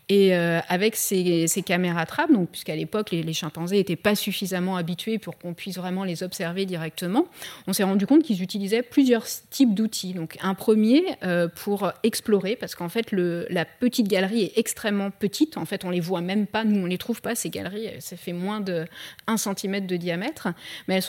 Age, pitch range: 30-49, 180-225 Hz